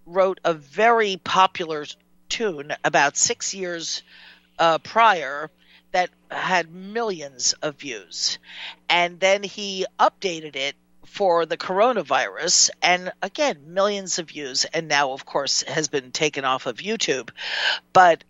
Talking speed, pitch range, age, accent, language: 130 wpm, 155-185 Hz, 50-69, American, English